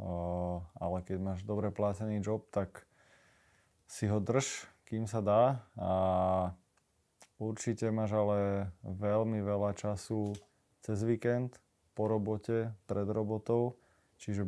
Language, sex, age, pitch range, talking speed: Slovak, male, 20-39, 100-110 Hz, 110 wpm